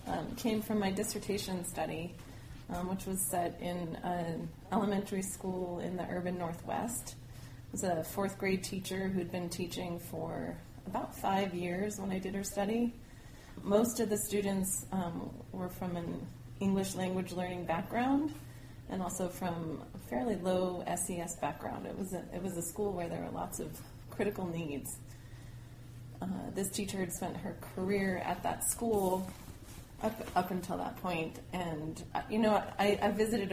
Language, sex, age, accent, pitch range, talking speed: English, female, 30-49, American, 160-195 Hz, 160 wpm